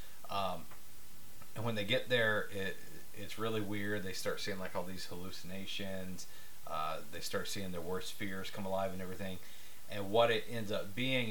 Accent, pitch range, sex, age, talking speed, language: American, 85-105 Hz, male, 30-49, 180 wpm, English